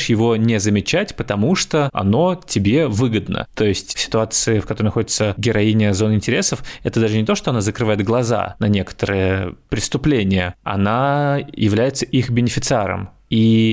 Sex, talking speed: male, 150 wpm